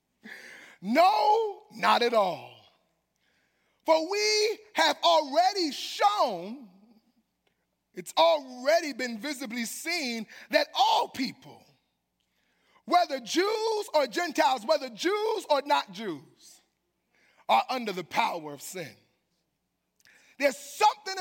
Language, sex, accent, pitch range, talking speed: English, male, American, 240-370 Hz, 95 wpm